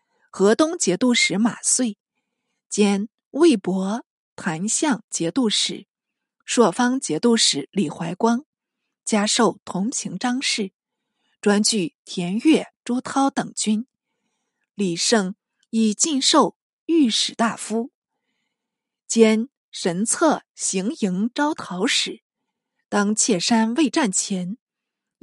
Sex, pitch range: female, 205-260 Hz